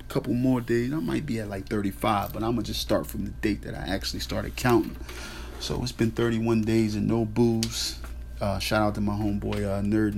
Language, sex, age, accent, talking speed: English, male, 30-49, American, 225 wpm